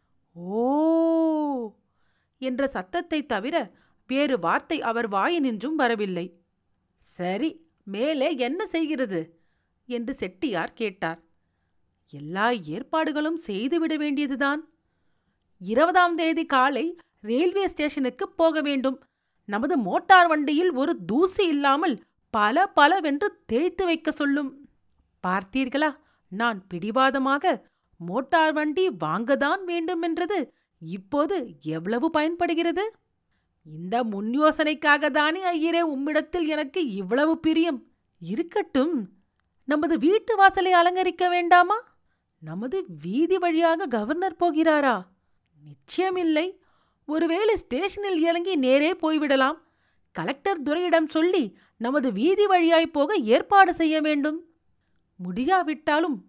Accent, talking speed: native, 90 wpm